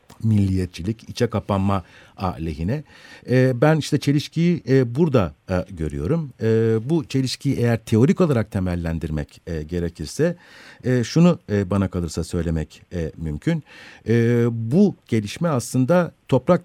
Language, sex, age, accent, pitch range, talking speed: Turkish, male, 50-69, native, 95-125 Hz, 90 wpm